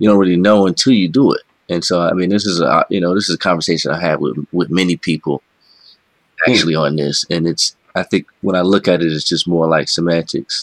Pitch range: 85-100 Hz